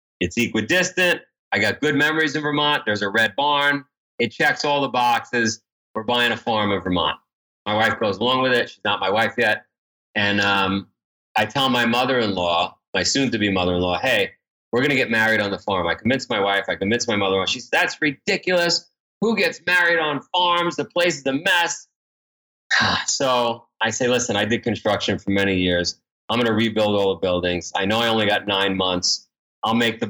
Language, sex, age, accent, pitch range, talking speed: English, male, 30-49, American, 100-130 Hz, 205 wpm